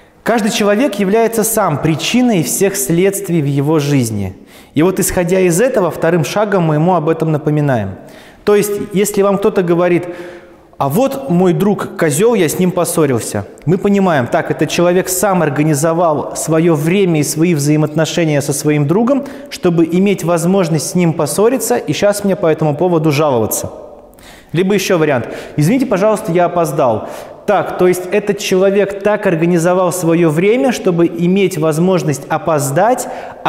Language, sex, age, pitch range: Russian, male, 20-39, 155-200 Hz